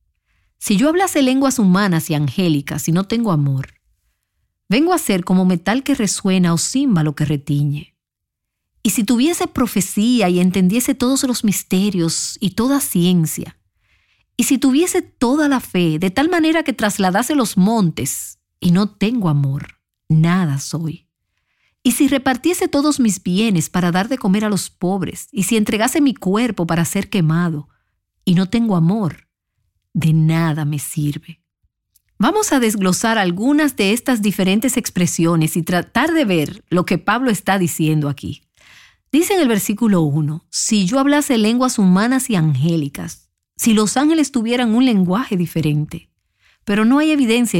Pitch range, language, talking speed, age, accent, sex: 160-245 Hz, Spanish, 155 wpm, 40-59, American, female